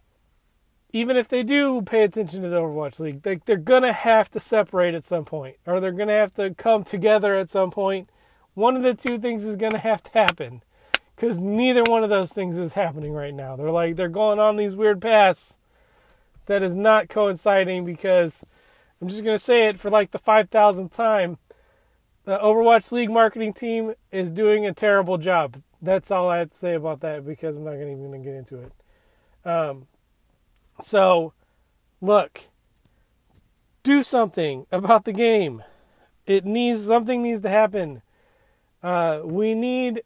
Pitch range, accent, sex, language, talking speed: 175-225 Hz, American, male, English, 180 wpm